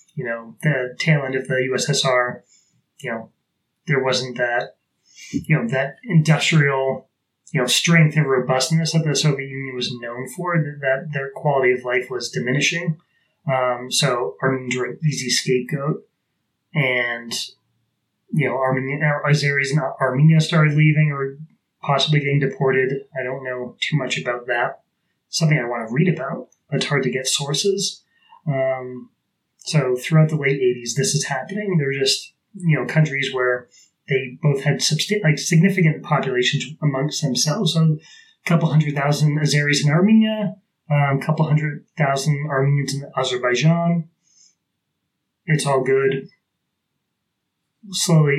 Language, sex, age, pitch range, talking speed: English, male, 30-49, 130-160 Hz, 150 wpm